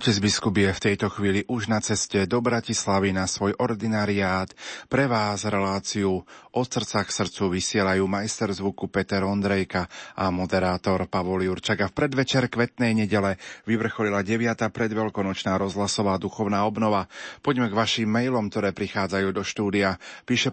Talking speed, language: 145 wpm, Slovak